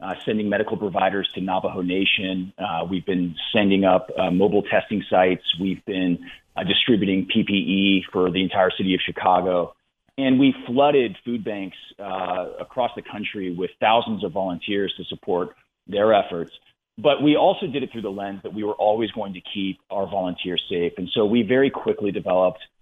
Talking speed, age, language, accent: 180 wpm, 40-59, English, American